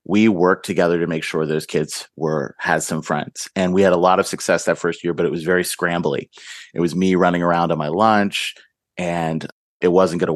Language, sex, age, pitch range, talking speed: English, male, 30-49, 85-100 Hz, 230 wpm